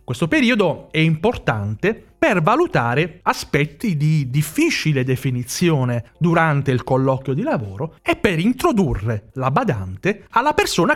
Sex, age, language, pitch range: male, 40-59, Italian, 125-170 Hz